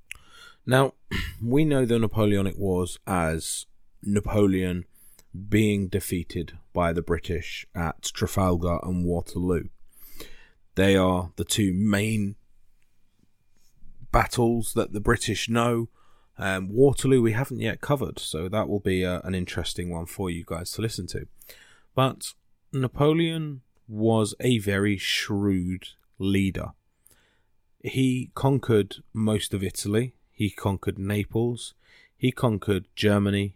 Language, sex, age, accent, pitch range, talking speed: English, male, 20-39, British, 90-115 Hz, 115 wpm